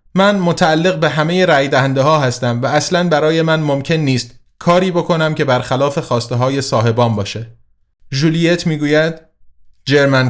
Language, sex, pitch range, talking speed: Persian, male, 120-165 Hz, 130 wpm